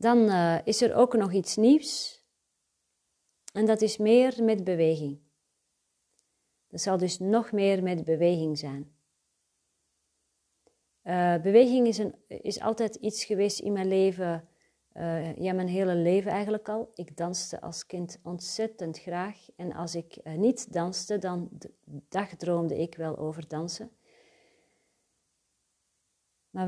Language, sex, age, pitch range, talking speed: Dutch, female, 40-59, 165-210 Hz, 135 wpm